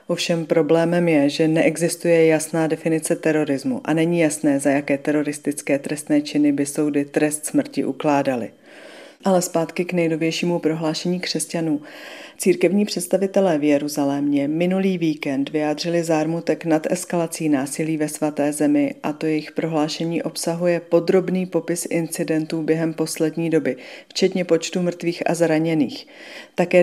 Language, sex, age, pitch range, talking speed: Czech, female, 40-59, 155-175 Hz, 130 wpm